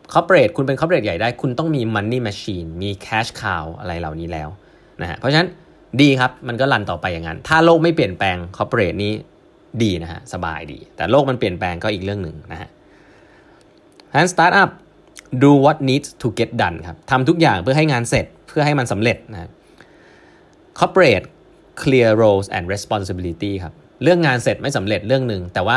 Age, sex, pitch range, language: 20-39, male, 100-145 Hz, Thai